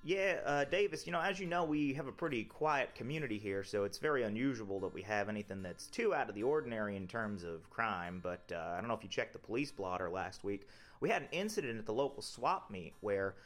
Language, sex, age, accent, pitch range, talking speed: English, male, 30-49, American, 100-140 Hz, 250 wpm